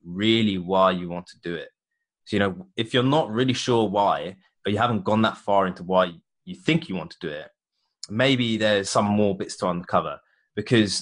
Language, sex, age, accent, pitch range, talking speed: English, male, 20-39, British, 95-115 Hz, 210 wpm